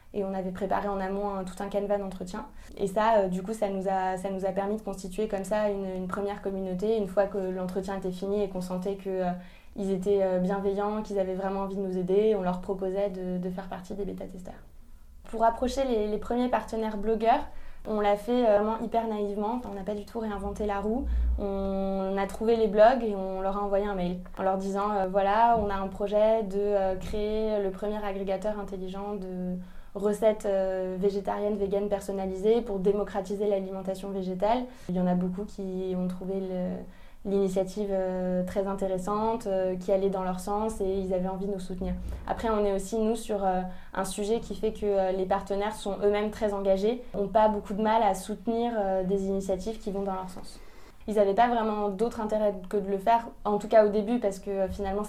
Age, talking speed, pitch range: 20-39, 205 wpm, 190-210 Hz